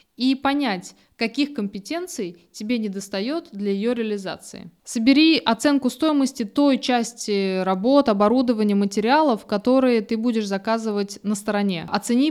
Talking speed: 115 wpm